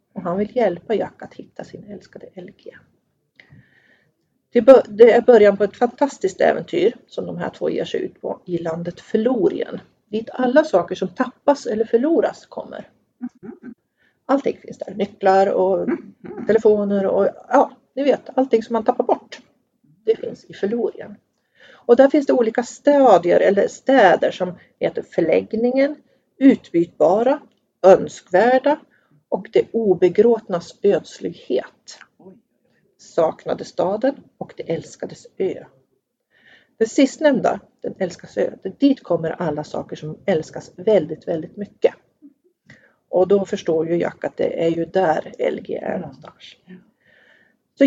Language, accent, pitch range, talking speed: Swedish, native, 185-270 Hz, 135 wpm